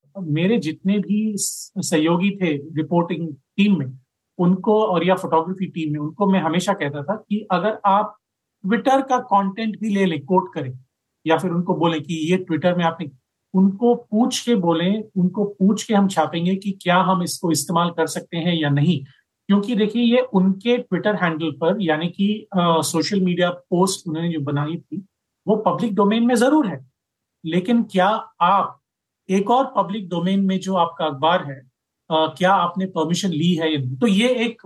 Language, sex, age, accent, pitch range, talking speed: Hindi, male, 40-59, native, 160-200 Hz, 175 wpm